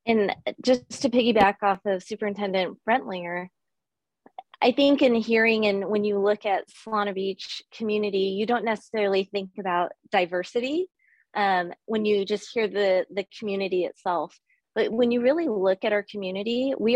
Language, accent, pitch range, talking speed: English, American, 190-235 Hz, 155 wpm